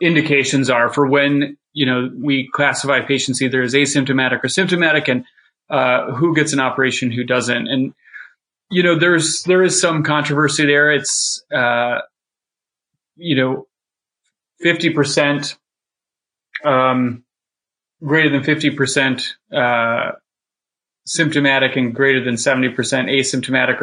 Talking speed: 120 wpm